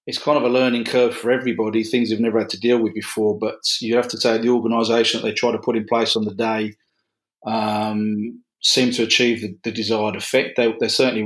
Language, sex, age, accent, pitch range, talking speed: English, male, 30-49, British, 115-130 Hz, 235 wpm